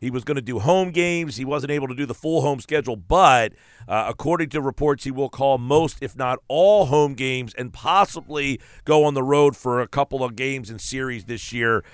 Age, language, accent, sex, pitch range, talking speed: 50-69, English, American, male, 115-140 Hz, 225 wpm